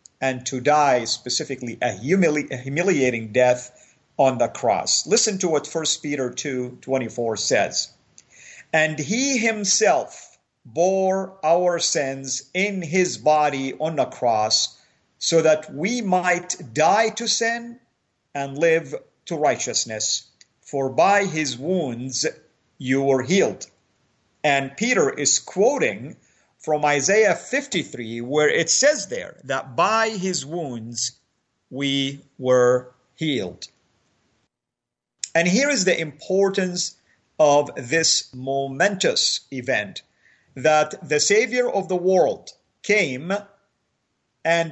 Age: 50-69